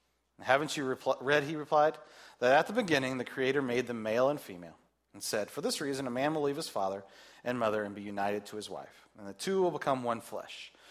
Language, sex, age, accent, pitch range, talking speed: English, male, 30-49, American, 130-180 Hz, 230 wpm